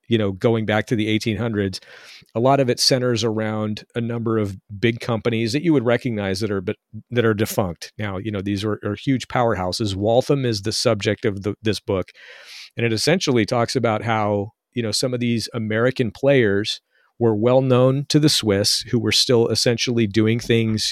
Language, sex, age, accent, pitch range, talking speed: English, male, 40-59, American, 110-125 Hz, 200 wpm